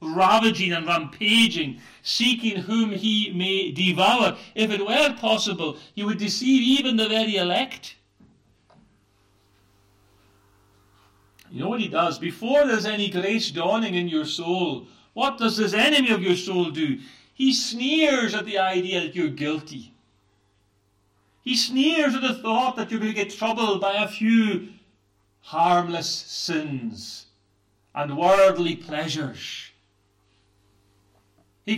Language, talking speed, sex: English, 130 wpm, male